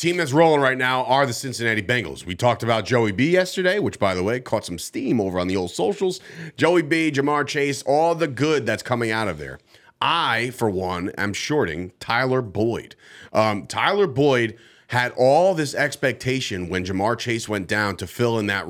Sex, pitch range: male, 110-150 Hz